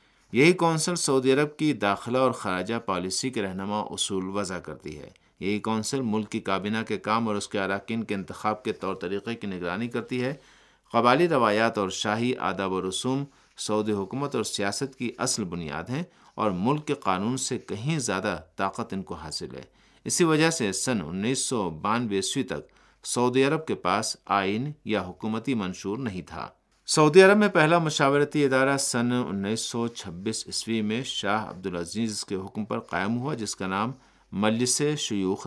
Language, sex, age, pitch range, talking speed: Urdu, male, 50-69, 95-130 Hz, 170 wpm